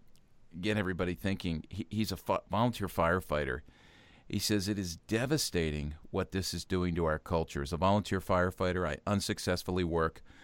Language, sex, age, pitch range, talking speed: English, male, 40-59, 80-95 Hz, 150 wpm